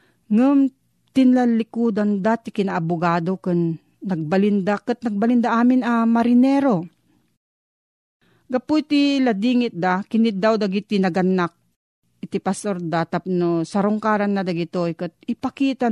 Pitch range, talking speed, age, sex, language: 175-230 Hz, 105 wpm, 40-59, female, Filipino